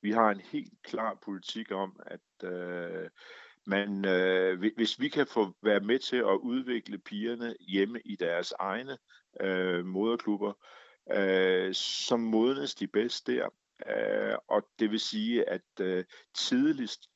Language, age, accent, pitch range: Danish, 50-69, native, 95-125 Hz